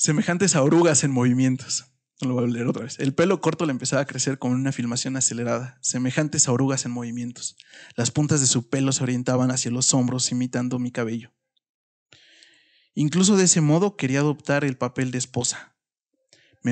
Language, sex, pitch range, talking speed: Spanish, male, 125-155 Hz, 185 wpm